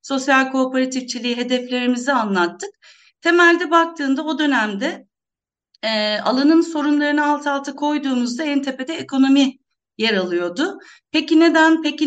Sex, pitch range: female, 225-300 Hz